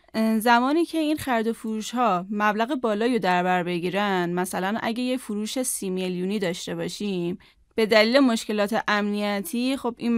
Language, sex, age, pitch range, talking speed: Persian, female, 10-29, 195-250 Hz, 155 wpm